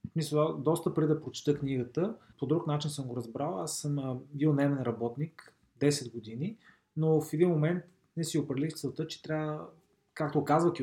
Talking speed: 185 wpm